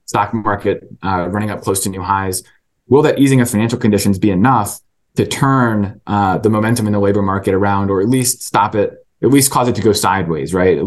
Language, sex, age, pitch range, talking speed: English, male, 20-39, 100-125 Hz, 225 wpm